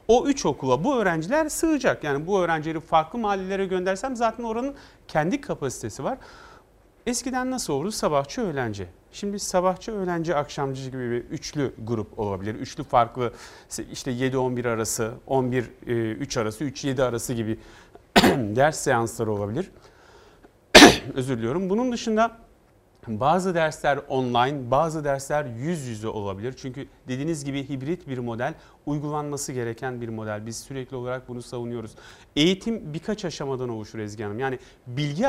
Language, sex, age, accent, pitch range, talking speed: Turkish, male, 40-59, native, 125-180 Hz, 135 wpm